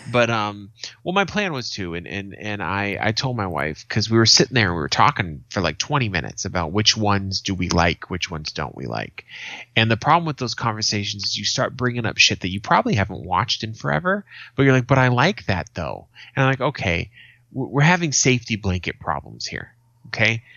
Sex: male